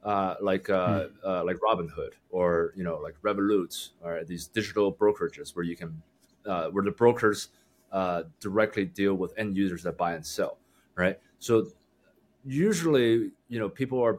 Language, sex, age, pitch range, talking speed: English, male, 30-49, 95-120 Hz, 170 wpm